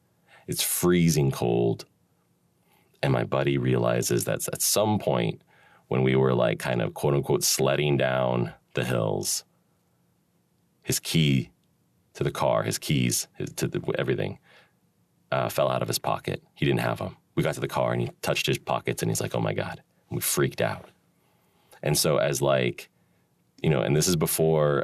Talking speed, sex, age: 180 wpm, male, 30-49